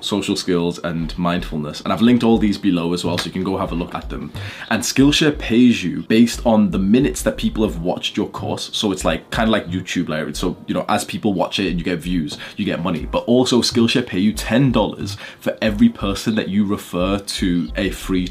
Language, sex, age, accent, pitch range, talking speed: English, male, 20-39, British, 90-115 Hz, 235 wpm